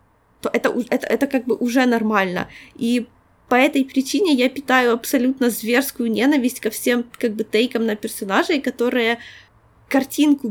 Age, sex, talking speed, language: 20-39, female, 150 wpm, Ukrainian